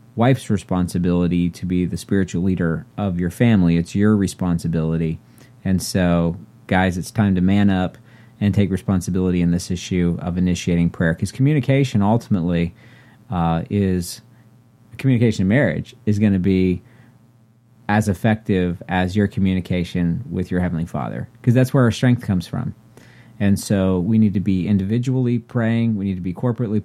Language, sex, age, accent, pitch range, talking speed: English, male, 40-59, American, 90-115 Hz, 160 wpm